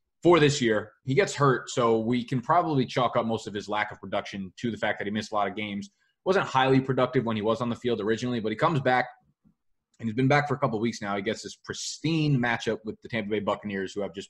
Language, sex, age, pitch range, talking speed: English, male, 20-39, 105-135 Hz, 275 wpm